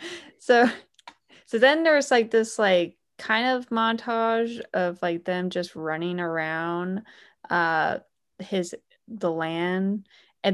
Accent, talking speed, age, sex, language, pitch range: American, 120 wpm, 20-39, female, English, 175-210 Hz